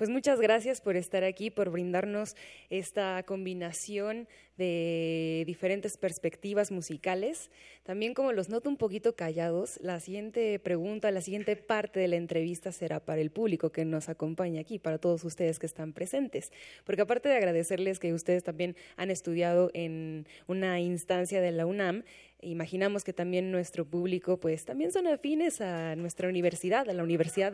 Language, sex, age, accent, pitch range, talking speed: Spanish, female, 20-39, Mexican, 170-220 Hz, 160 wpm